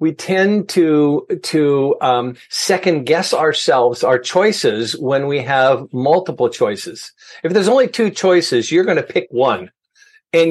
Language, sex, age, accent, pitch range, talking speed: English, male, 50-69, American, 145-215 Hz, 150 wpm